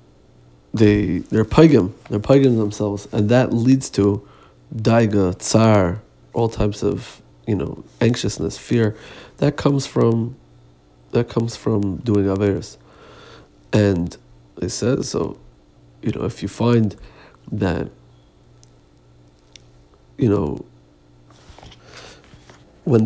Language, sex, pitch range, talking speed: Hebrew, male, 95-115 Hz, 105 wpm